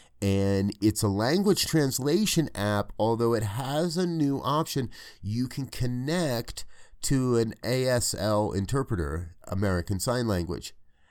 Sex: male